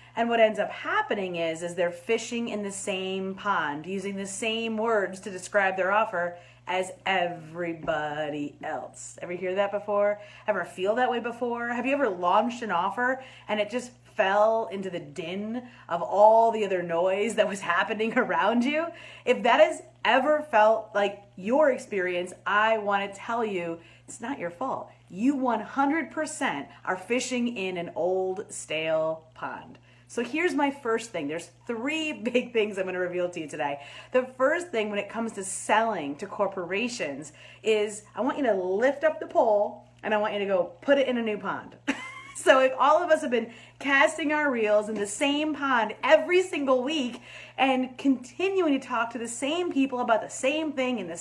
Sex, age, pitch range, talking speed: female, 30-49, 185-260 Hz, 185 wpm